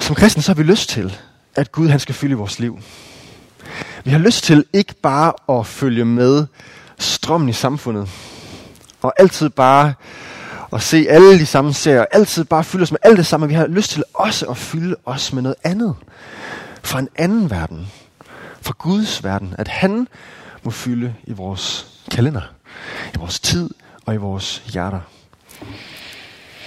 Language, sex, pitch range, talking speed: Danish, male, 110-150 Hz, 170 wpm